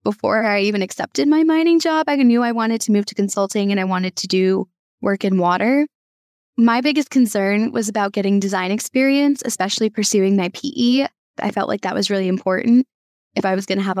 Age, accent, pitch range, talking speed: 10-29, American, 195-235 Hz, 200 wpm